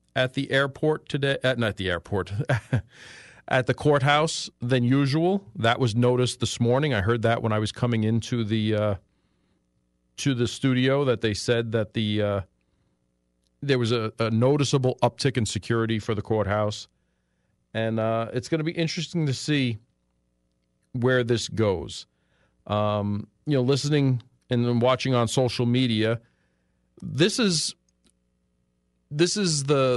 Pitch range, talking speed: 90-135 Hz, 150 wpm